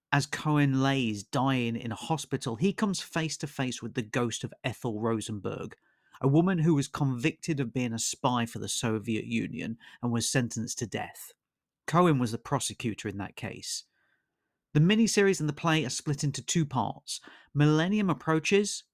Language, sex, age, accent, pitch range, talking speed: English, male, 40-59, British, 115-160 Hz, 175 wpm